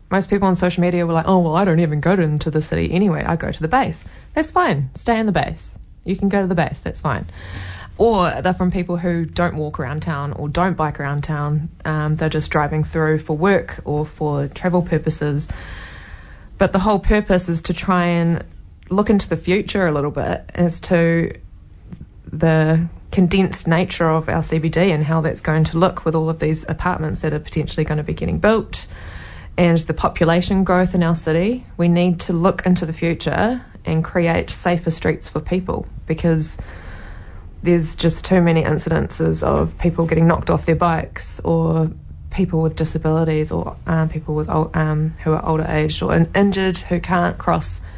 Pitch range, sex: 150-180 Hz, female